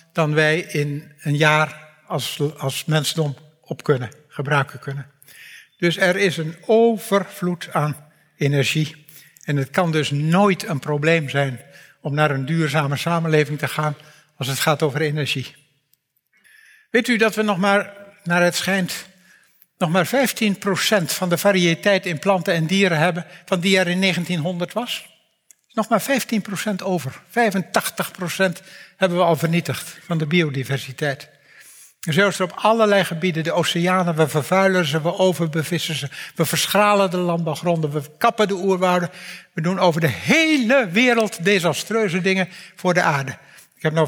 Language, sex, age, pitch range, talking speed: Dutch, male, 60-79, 155-190 Hz, 155 wpm